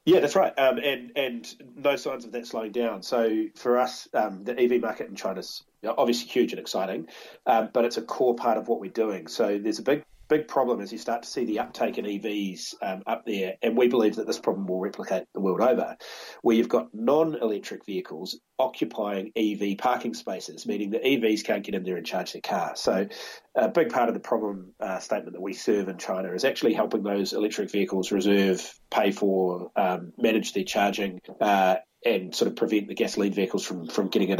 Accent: Australian